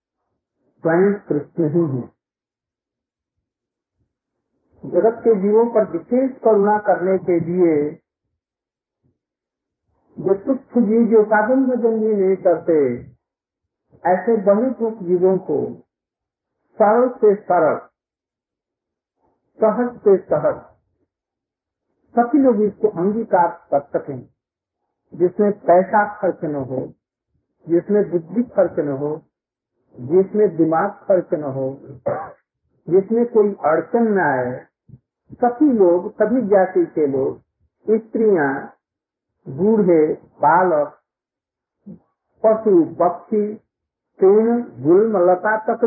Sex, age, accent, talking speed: male, 50-69, native, 90 wpm